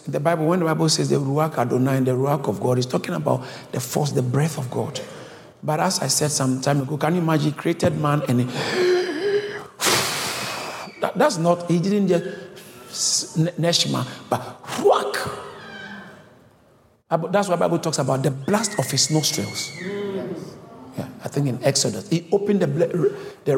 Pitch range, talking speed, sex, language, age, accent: 155-210 Hz, 160 wpm, male, English, 50-69, Nigerian